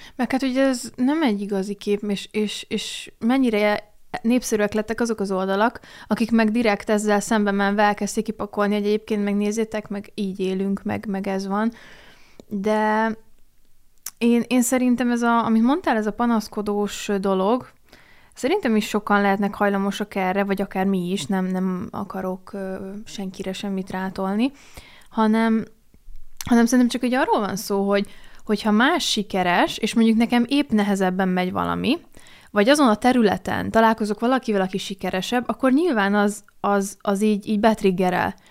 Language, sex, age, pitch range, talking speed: Hungarian, female, 20-39, 195-230 Hz, 155 wpm